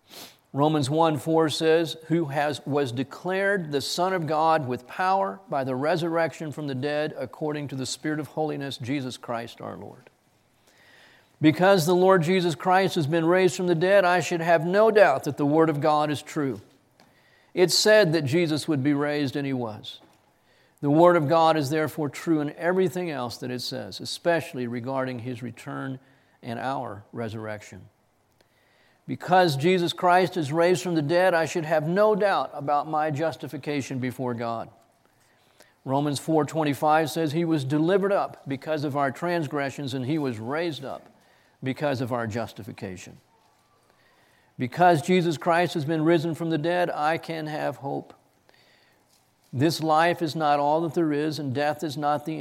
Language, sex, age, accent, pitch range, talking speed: English, male, 40-59, American, 135-170 Hz, 170 wpm